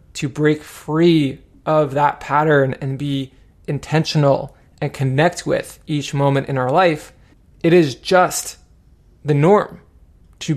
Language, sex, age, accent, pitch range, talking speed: English, male, 20-39, American, 135-160 Hz, 130 wpm